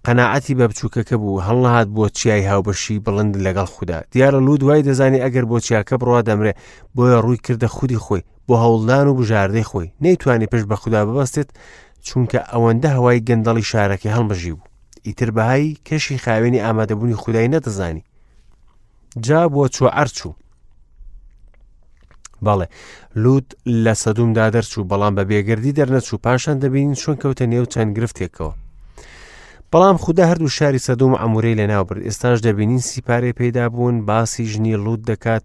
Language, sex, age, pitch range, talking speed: English, male, 30-49, 105-130 Hz, 155 wpm